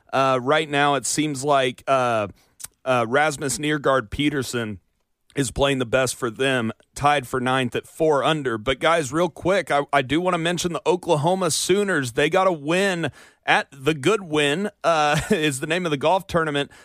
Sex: male